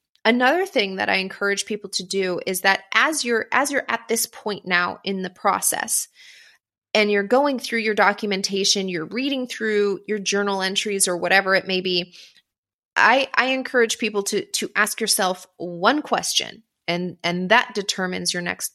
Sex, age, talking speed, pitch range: female, 20-39, 175 wpm, 190-225 Hz